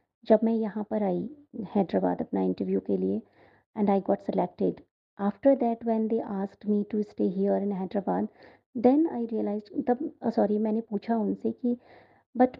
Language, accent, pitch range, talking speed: Hindi, native, 185-225 Hz, 170 wpm